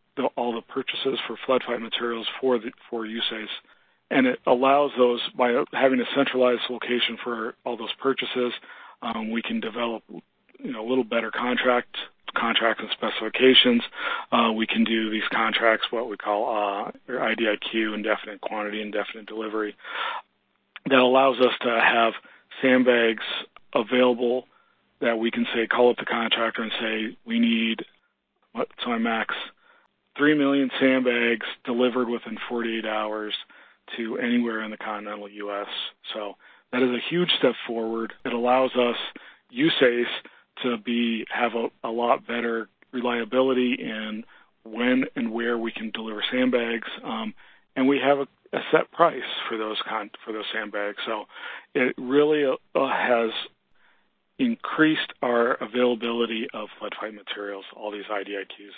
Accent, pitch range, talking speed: American, 110-130 Hz, 145 wpm